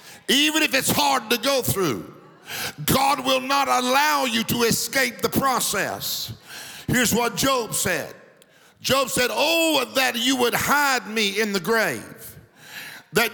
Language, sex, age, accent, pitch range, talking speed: English, male, 50-69, American, 225-270 Hz, 145 wpm